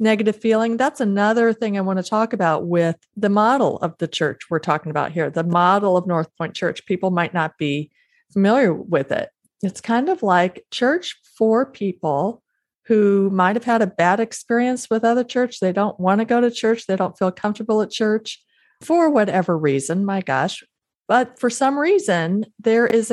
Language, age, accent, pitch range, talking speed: English, 40-59, American, 185-225 Hz, 190 wpm